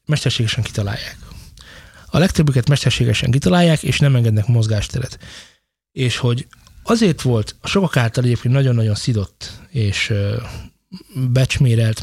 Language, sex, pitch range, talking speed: Hungarian, male, 115-140 Hz, 105 wpm